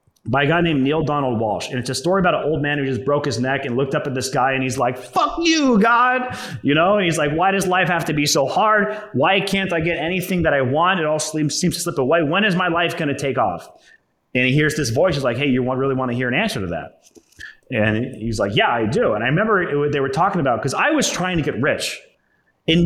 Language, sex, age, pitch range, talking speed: English, male, 30-49, 130-175 Hz, 280 wpm